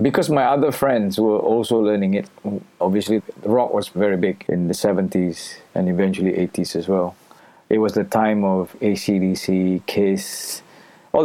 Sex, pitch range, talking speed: male, 100-125 Hz, 155 wpm